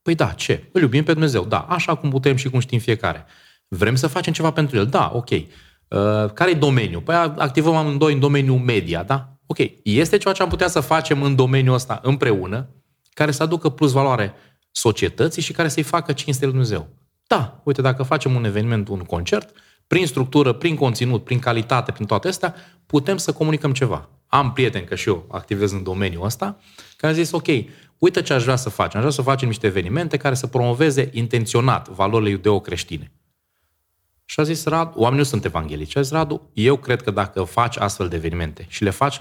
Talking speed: 200 wpm